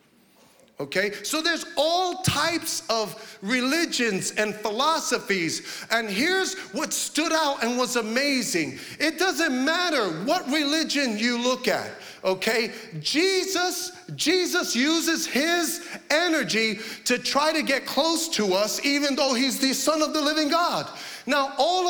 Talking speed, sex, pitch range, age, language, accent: 135 wpm, male, 235-315 Hz, 40-59, English, American